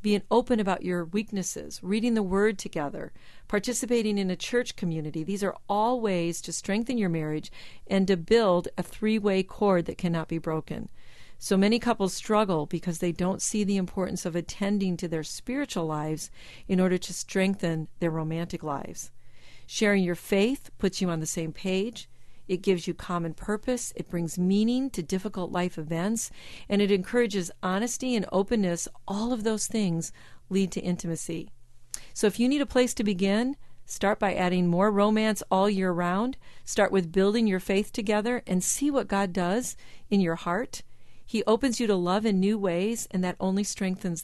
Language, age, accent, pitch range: English, 50-69, American, 175-220 Hz